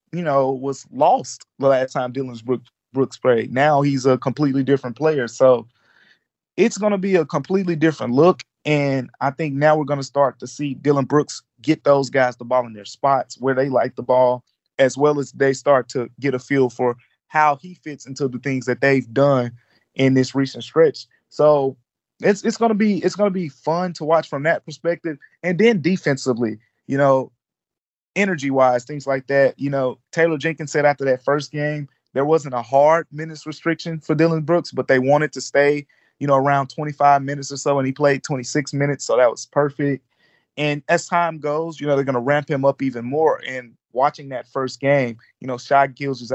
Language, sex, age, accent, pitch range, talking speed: English, male, 20-39, American, 125-150 Hz, 210 wpm